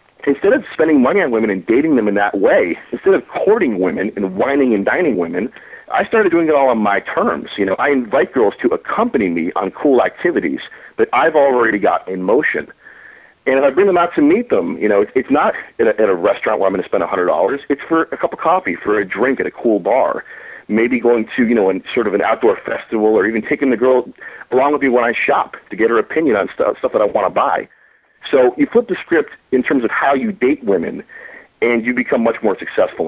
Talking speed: 240 wpm